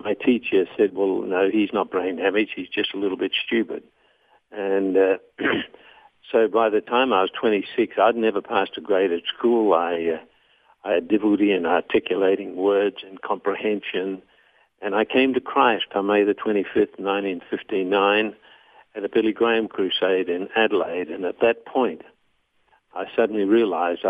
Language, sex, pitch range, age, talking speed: English, male, 95-110 Hz, 60-79, 160 wpm